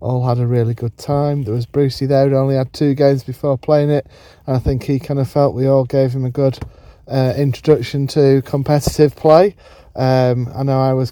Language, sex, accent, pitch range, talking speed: English, male, British, 115-140 Hz, 220 wpm